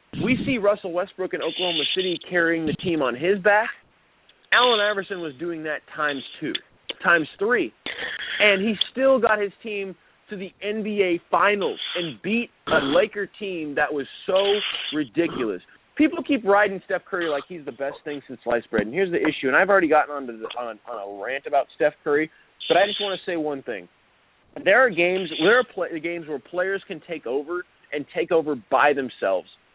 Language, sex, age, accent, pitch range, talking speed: English, male, 30-49, American, 150-195 Hz, 185 wpm